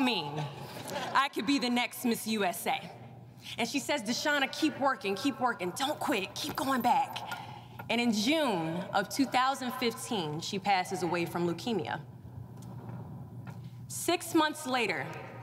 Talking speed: 130 wpm